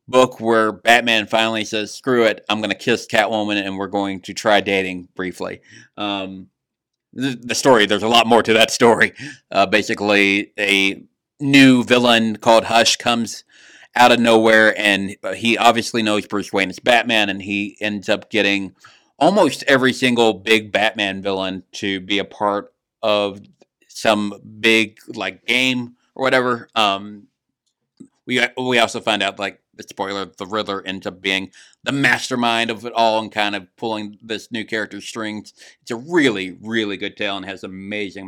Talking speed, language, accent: 165 wpm, English, American